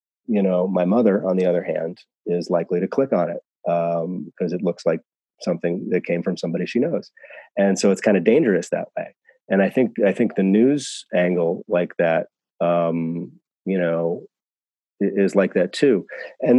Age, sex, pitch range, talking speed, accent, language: 30-49, male, 90-100 Hz, 190 wpm, American, English